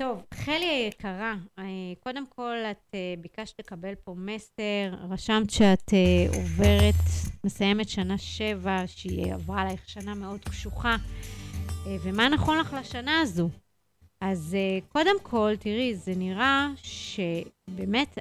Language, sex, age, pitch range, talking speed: Hebrew, female, 30-49, 185-240 Hz, 110 wpm